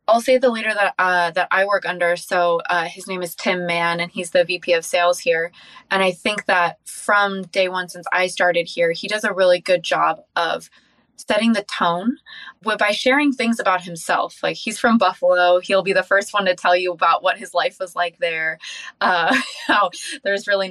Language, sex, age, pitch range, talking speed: English, female, 20-39, 175-230 Hz, 210 wpm